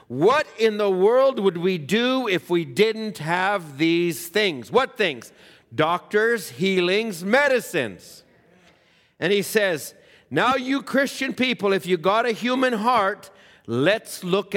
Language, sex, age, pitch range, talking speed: English, male, 50-69, 145-200 Hz, 135 wpm